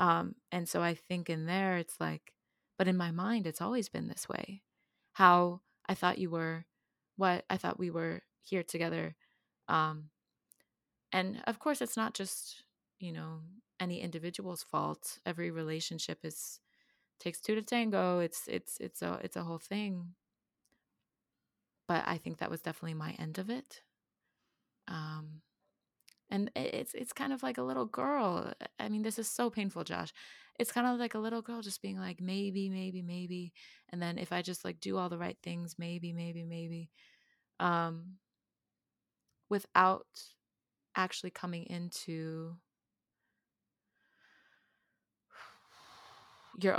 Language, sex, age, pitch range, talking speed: English, female, 20-39, 165-200 Hz, 150 wpm